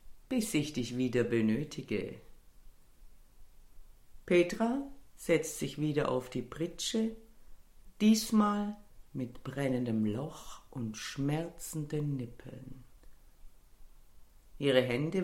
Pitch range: 125-170 Hz